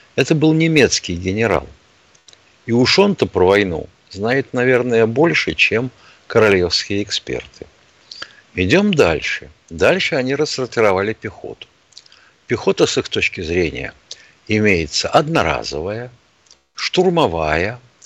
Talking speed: 95 wpm